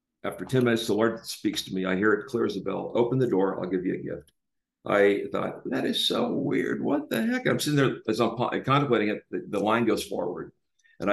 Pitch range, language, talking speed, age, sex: 100-125 Hz, English, 245 wpm, 50-69, male